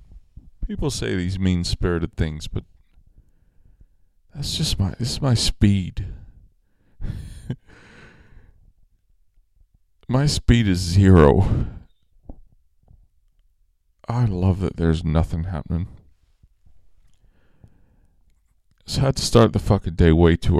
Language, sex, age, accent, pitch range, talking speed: English, male, 40-59, American, 80-110 Hz, 95 wpm